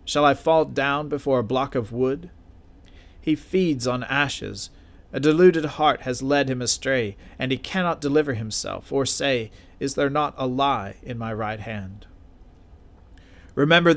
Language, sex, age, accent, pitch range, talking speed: English, male, 40-59, American, 95-150 Hz, 160 wpm